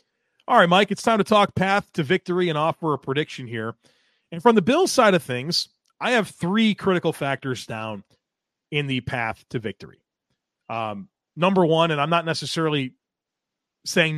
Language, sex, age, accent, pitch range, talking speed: English, male, 30-49, American, 130-175 Hz, 175 wpm